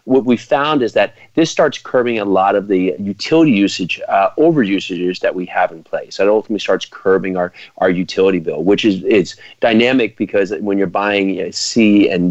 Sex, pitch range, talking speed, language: male, 90-105 Hz, 205 wpm, English